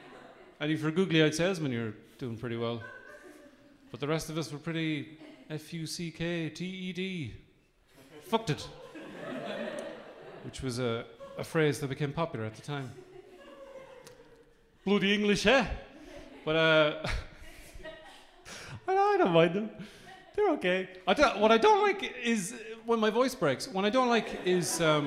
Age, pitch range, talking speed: 30-49, 145-230 Hz, 135 wpm